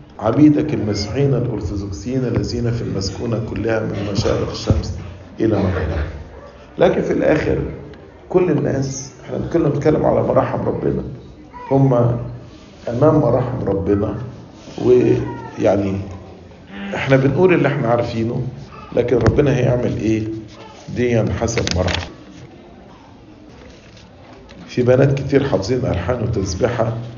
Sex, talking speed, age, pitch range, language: male, 100 wpm, 50-69, 100-140 Hz, English